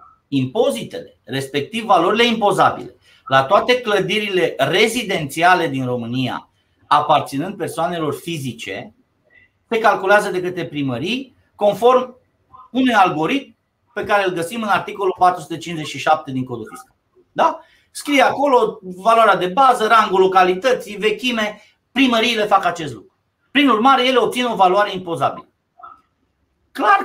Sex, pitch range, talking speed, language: male, 165-255 Hz, 115 wpm, Romanian